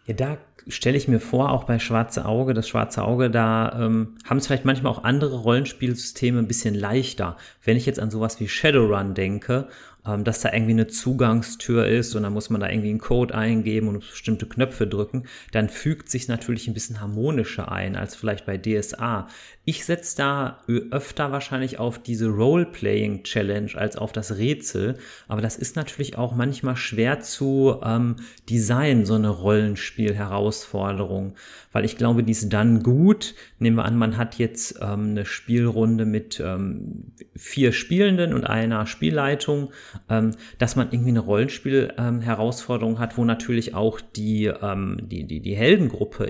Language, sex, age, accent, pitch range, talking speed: German, male, 30-49, German, 110-125 Hz, 170 wpm